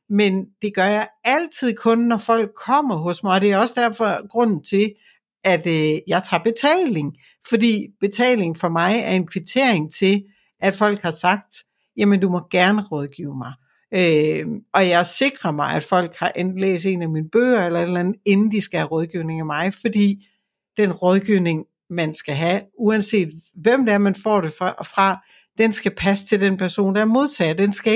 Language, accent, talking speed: Danish, native, 190 wpm